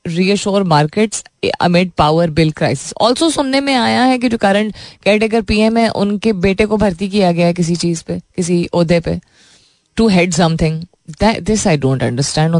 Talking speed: 105 wpm